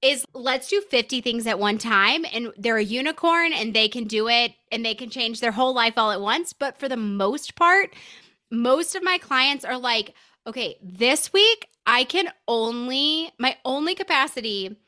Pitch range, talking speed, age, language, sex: 225-300 Hz, 190 wpm, 20-39, English, female